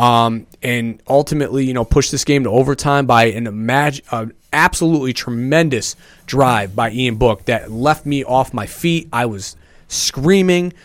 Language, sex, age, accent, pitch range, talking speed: English, male, 30-49, American, 115-140 Hz, 150 wpm